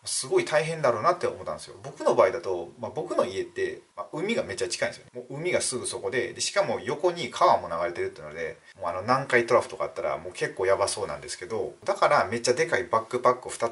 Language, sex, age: Japanese, male, 30-49